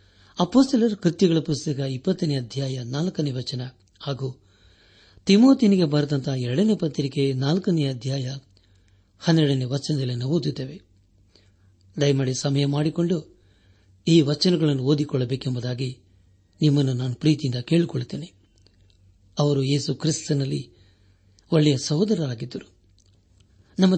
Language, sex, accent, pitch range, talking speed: Kannada, male, native, 100-155 Hz, 85 wpm